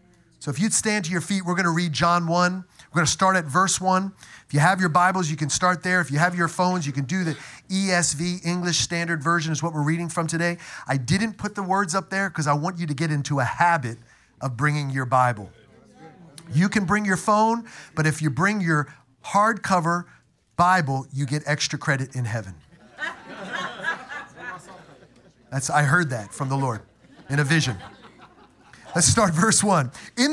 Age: 40-59